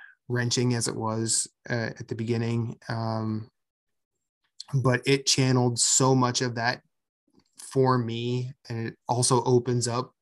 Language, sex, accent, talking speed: English, male, American, 135 wpm